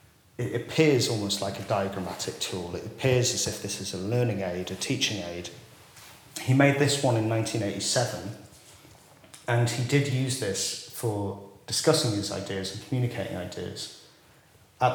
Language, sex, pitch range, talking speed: English, male, 105-140 Hz, 155 wpm